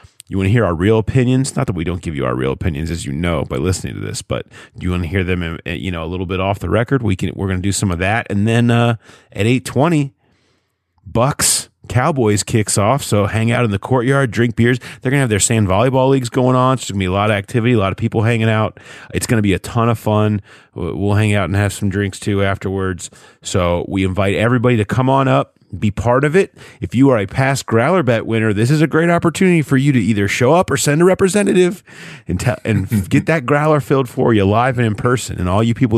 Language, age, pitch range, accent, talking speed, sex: English, 30-49, 95-120 Hz, American, 260 wpm, male